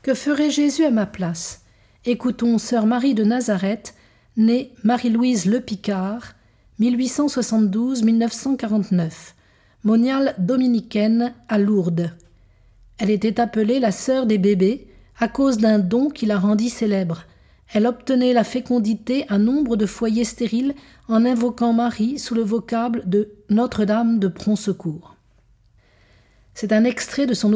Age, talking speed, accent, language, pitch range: 50-69, 125 wpm, French, French, 195-245 Hz